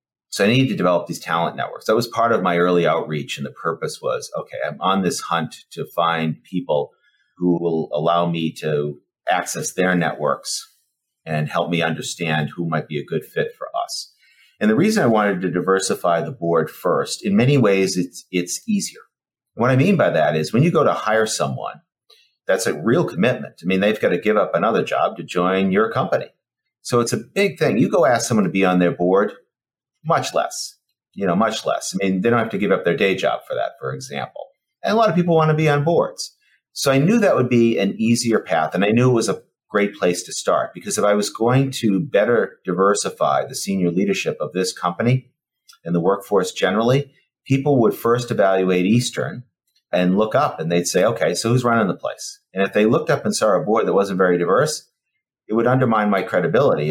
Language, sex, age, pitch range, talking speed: English, male, 40-59, 85-130 Hz, 220 wpm